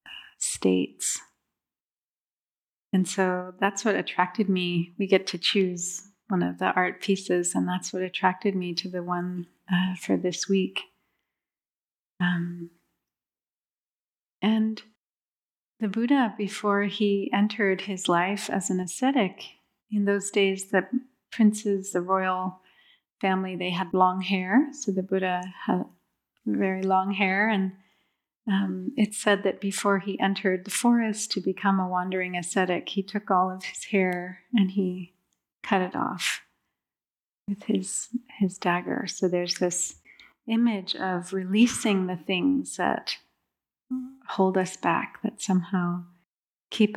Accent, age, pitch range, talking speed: Canadian, 30-49, 185-210 Hz, 135 wpm